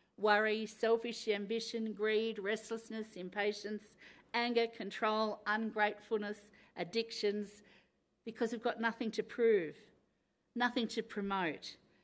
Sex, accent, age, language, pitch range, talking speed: female, Australian, 50-69, English, 170-220 Hz, 95 wpm